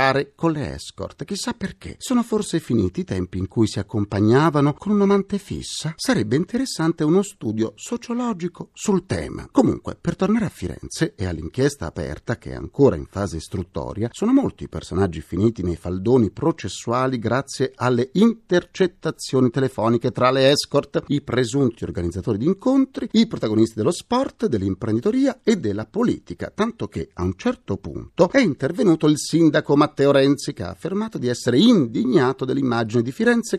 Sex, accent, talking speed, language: male, native, 155 wpm, Italian